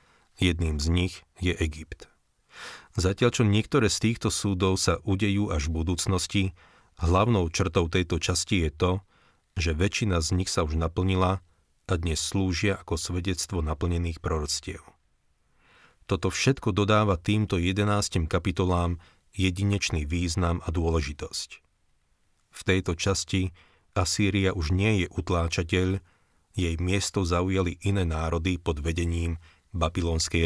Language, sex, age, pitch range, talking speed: Slovak, male, 40-59, 85-100 Hz, 120 wpm